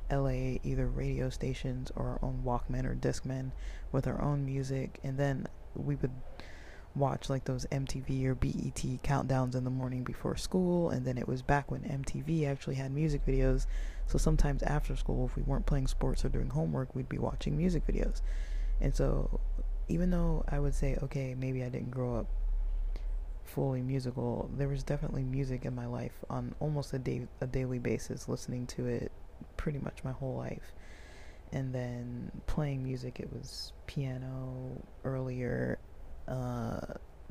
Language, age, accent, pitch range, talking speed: English, 20-39, American, 115-135 Hz, 165 wpm